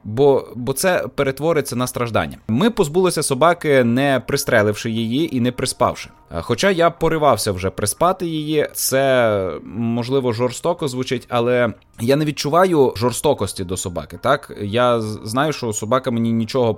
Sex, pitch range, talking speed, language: male, 120-155 Hz, 140 wpm, Ukrainian